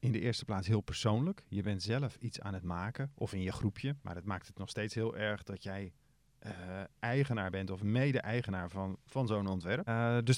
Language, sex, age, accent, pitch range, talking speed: Dutch, male, 40-59, Dutch, 105-140 Hz, 220 wpm